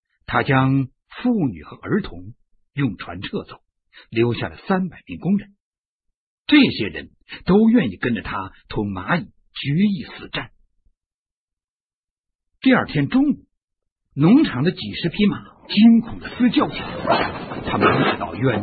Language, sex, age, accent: Chinese, male, 60-79, native